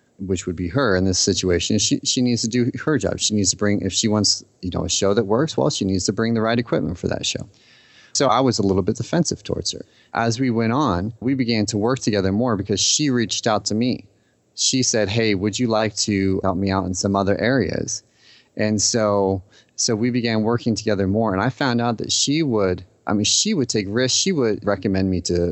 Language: English